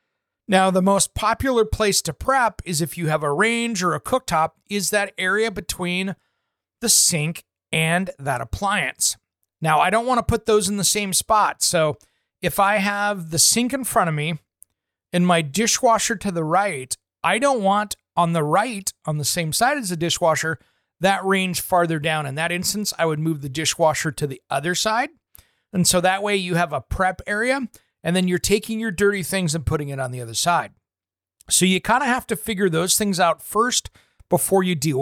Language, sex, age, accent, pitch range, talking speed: English, male, 30-49, American, 160-220 Hz, 200 wpm